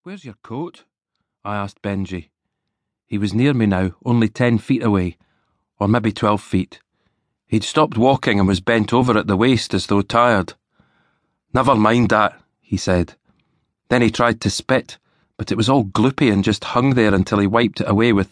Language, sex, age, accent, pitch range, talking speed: English, male, 40-59, British, 100-120 Hz, 185 wpm